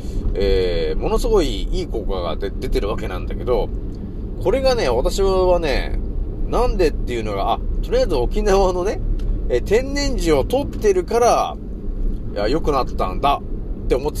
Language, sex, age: Japanese, male, 30-49